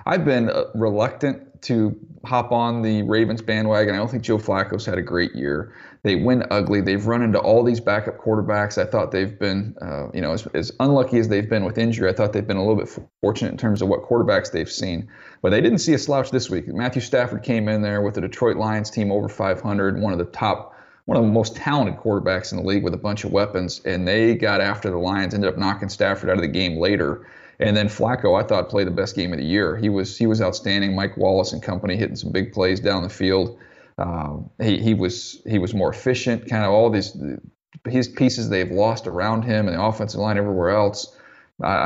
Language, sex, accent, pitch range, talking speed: English, male, American, 100-115 Hz, 235 wpm